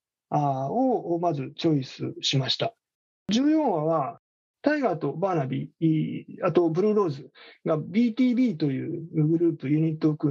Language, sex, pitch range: Japanese, male, 150-230 Hz